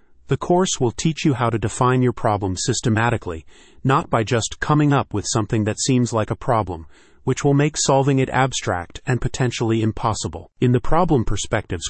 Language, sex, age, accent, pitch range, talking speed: English, male, 30-49, American, 110-135 Hz, 180 wpm